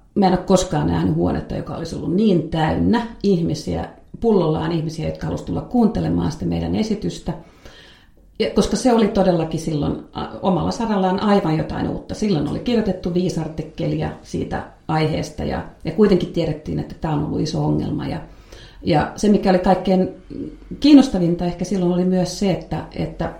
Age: 40-59